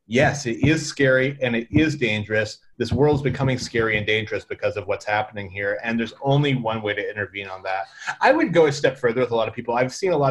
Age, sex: 30-49, male